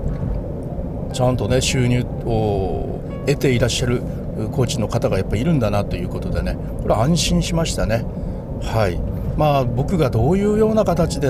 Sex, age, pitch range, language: male, 60-79, 105-140 Hz, Japanese